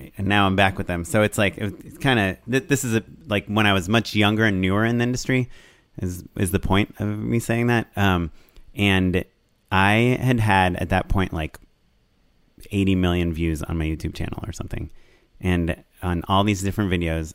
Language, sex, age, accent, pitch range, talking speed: English, male, 30-49, American, 85-105 Hz, 200 wpm